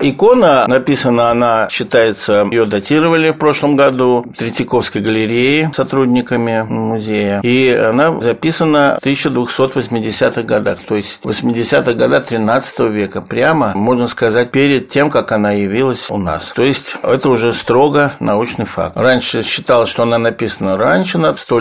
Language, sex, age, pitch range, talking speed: Russian, male, 50-69, 105-135 Hz, 140 wpm